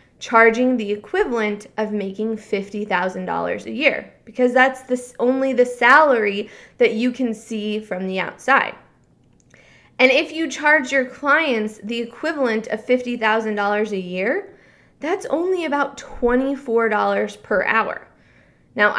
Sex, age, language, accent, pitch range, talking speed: female, 20-39, English, American, 210-265 Hz, 125 wpm